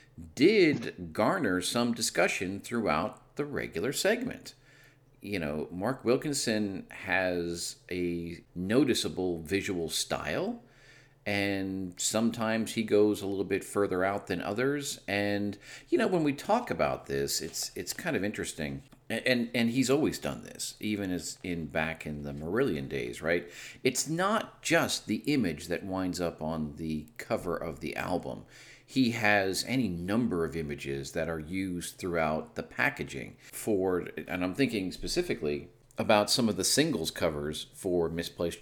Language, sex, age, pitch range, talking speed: English, male, 50-69, 80-115 Hz, 150 wpm